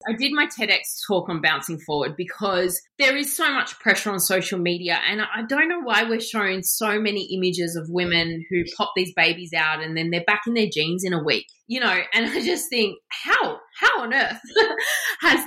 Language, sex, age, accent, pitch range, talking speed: English, female, 20-39, Australian, 175-230 Hz, 215 wpm